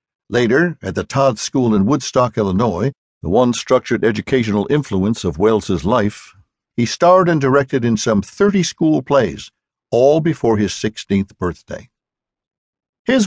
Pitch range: 105-145 Hz